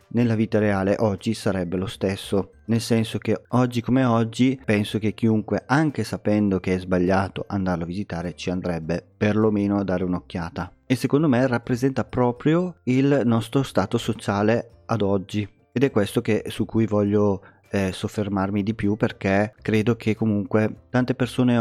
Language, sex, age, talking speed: Italian, male, 30-49, 160 wpm